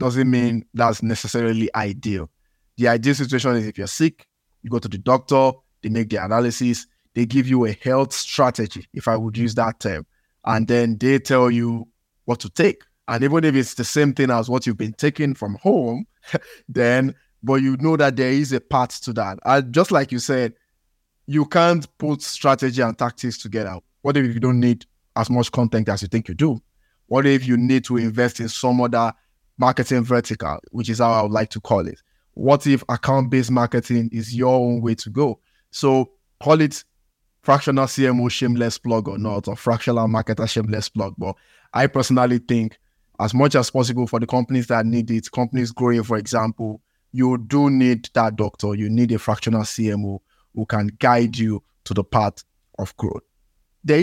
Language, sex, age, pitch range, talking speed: English, male, 20-39, 110-130 Hz, 190 wpm